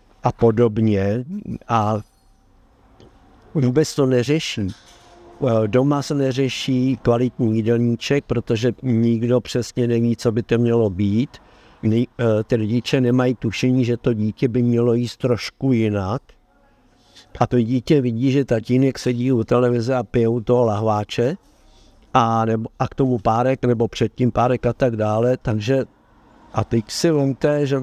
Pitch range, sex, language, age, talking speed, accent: 115-135 Hz, male, Czech, 60-79, 140 wpm, native